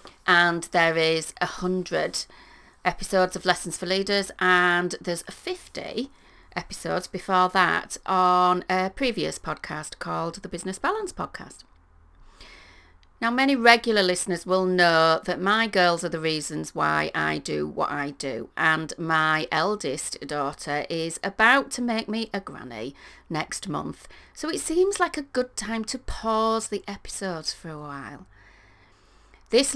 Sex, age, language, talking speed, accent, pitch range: female, 40-59, English, 145 wpm, British, 160-205 Hz